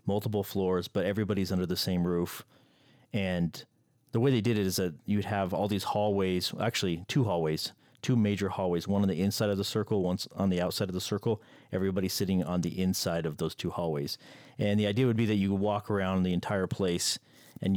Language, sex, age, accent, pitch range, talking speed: English, male, 30-49, American, 95-115 Hz, 215 wpm